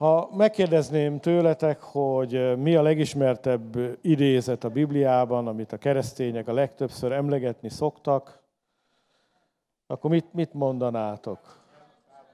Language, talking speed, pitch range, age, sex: English, 100 wpm, 125-155 Hz, 50-69, male